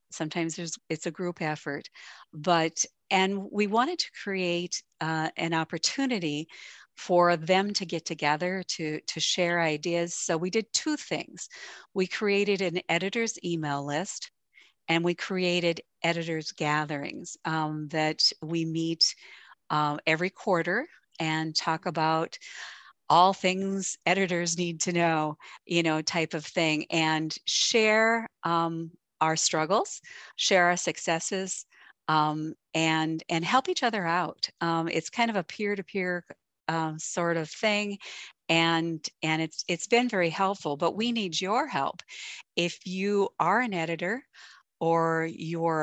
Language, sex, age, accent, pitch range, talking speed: English, female, 50-69, American, 160-190 Hz, 140 wpm